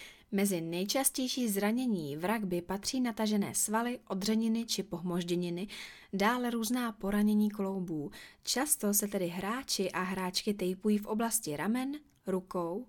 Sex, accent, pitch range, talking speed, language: female, native, 190-230 Hz, 120 wpm, Czech